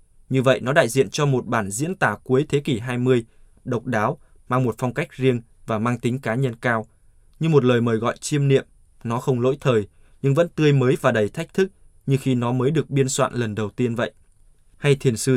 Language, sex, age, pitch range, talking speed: Vietnamese, male, 20-39, 110-140 Hz, 235 wpm